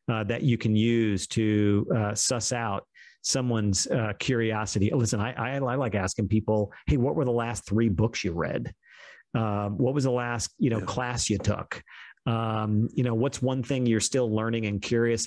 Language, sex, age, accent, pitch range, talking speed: English, male, 40-59, American, 110-130 Hz, 195 wpm